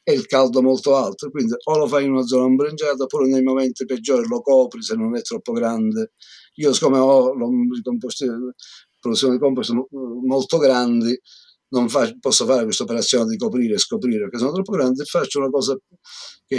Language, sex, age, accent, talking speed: Italian, male, 50-69, native, 180 wpm